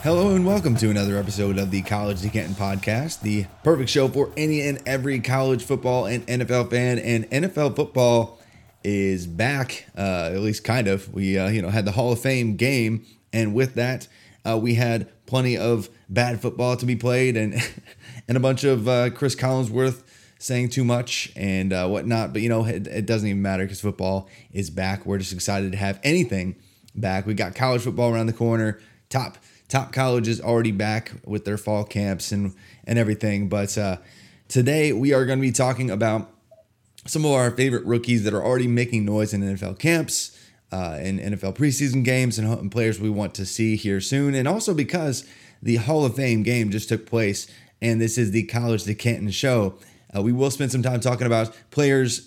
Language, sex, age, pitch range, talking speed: English, male, 20-39, 105-125 Hz, 195 wpm